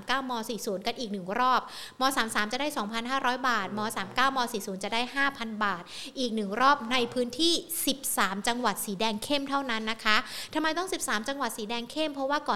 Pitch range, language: 210-260 Hz, Thai